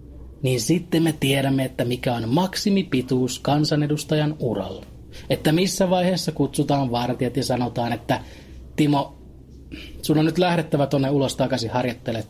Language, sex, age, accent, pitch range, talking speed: Finnish, male, 30-49, native, 125-155 Hz, 130 wpm